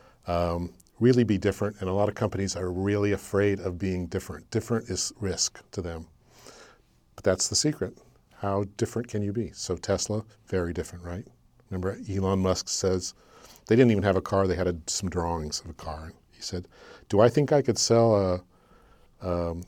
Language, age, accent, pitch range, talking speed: English, 50-69, American, 95-115 Hz, 190 wpm